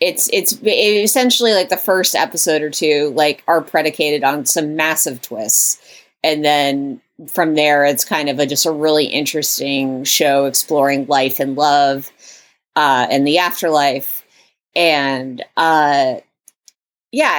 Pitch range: 140-170 Hz